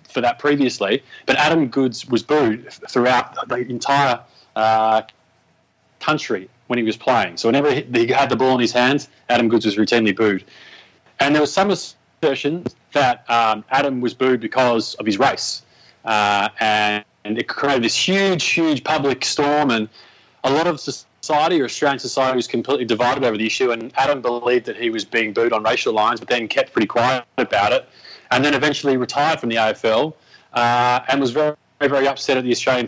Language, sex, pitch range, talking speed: English, male, 115-145 Hz, 190 wpm